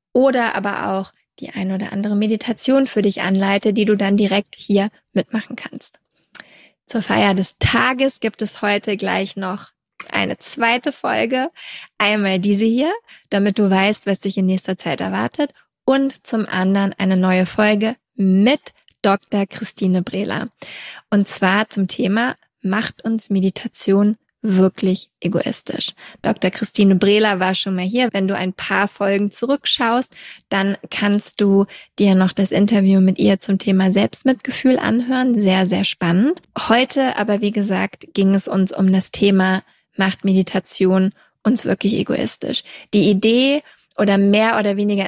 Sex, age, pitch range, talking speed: female, 20-39, 195-225 Hz, 150 wpm